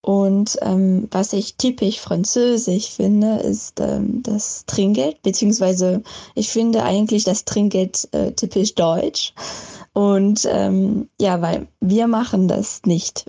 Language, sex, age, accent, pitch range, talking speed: German, female, 20-39, German, 190-220 Hz, 125 wpm